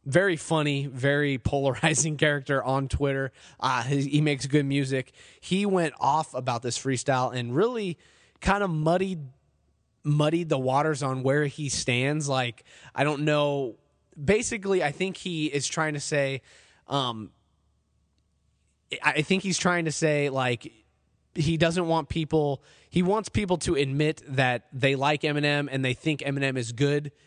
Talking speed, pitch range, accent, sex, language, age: 150 wpm, 130-155 Hz, American, male, English, 20-39